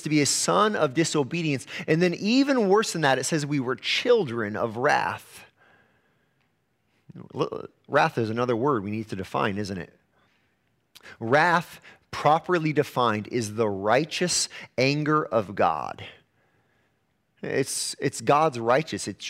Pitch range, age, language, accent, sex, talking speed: 105-155 Hz, 30-49, English, American, male, 135 wpm